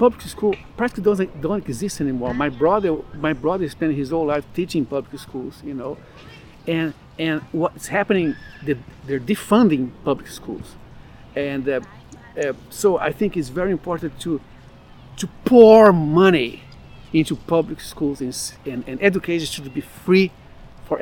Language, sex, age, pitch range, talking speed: English, male, 50-69, 140-215 Hz, 150 wpm